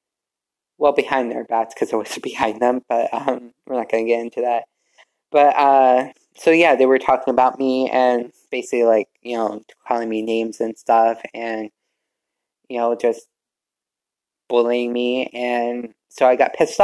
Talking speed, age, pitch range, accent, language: 170 wpm, 20-39, 115-130 Hz, American, English